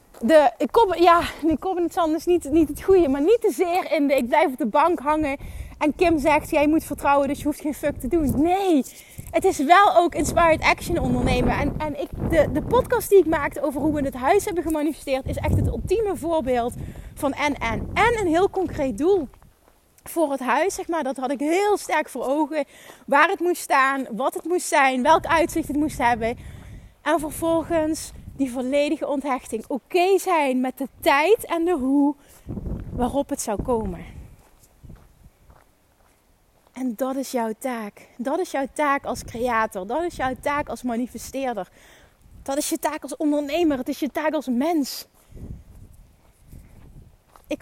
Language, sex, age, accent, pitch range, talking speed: Dutch, female, 30-49, Dutch, 270-335 Hz, 185 wpm